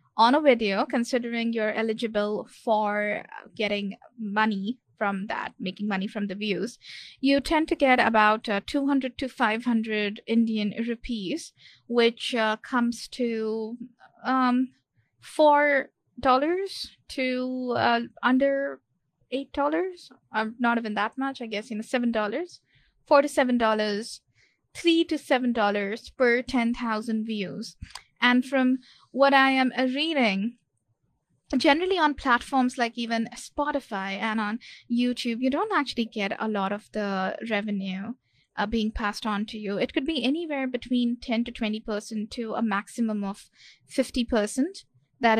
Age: 20-39